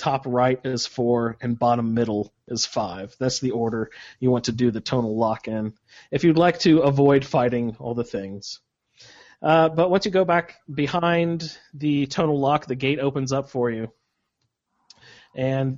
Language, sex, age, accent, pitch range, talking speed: English, male, 30-49, American, 120-145 Hz, 175 wpm